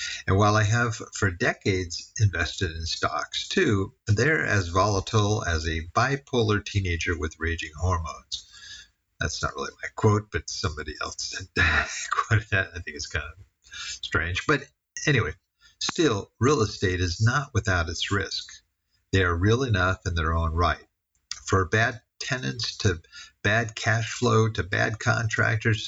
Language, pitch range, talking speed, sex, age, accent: English, 85-110 Hz, 150 wpm, male, 50-69, American